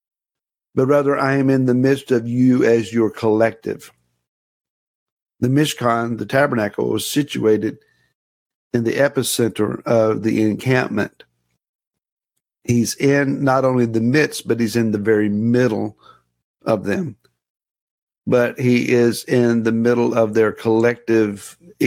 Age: 50-69